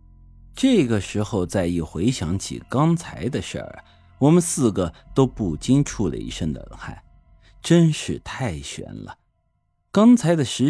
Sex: male